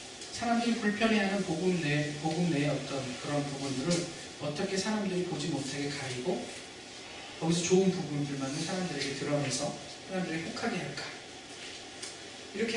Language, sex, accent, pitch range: Korean, male, native, 140-185 Hz